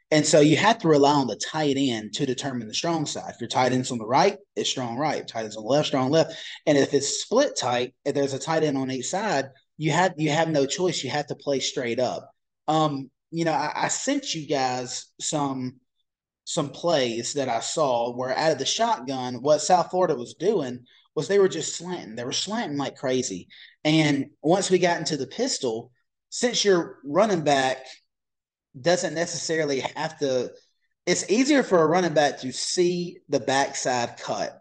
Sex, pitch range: male, 130-165 Hz